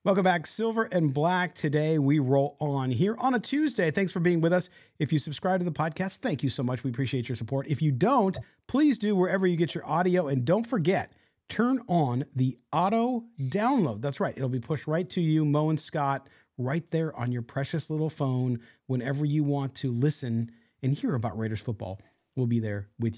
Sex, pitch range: male, 125-180 Hz